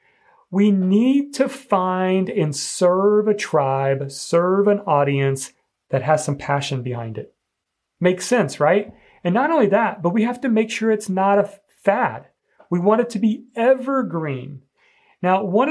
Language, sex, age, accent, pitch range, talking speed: English, male, 40-59, American, 155-220 Hz, 160 wpm